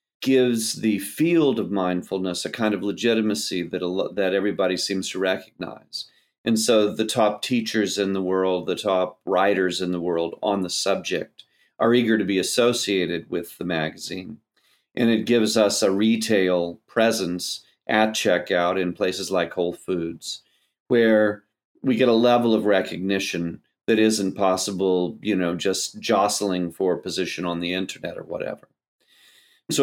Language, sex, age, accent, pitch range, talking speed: English, male, 40-59, American, 95-110 Hz, 155 wpm